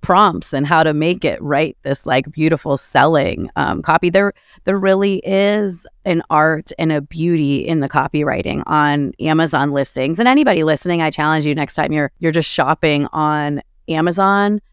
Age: 30-49